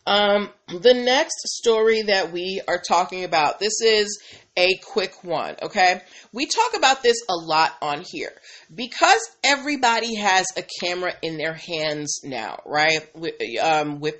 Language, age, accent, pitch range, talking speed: English, 30-49, American, 160-225 Hz, 150 wpm